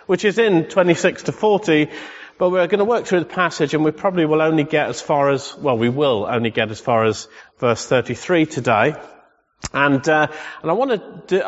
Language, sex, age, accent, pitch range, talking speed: English, male, 40-59, British, 135-175 Hz, 210 wpm